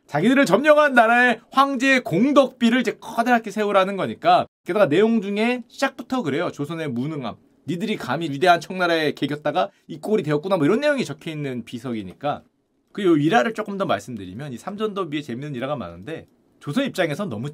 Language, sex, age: Korean, male, 30-49